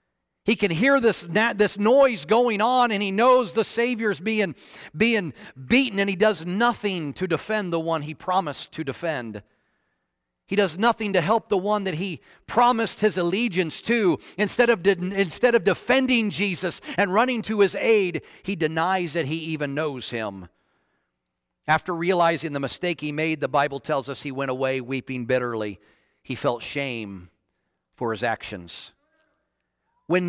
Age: 40-59